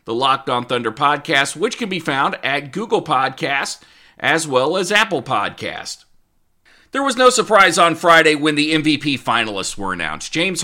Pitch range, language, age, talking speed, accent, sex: 120-170 Hz, English, 40-59, 170 wpm, American, male